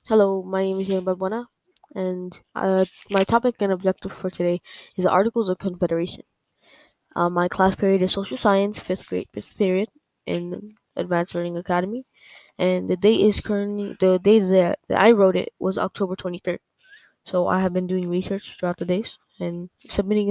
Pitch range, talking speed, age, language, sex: 185-205 Hz, 170 wpm, 10-29, English, female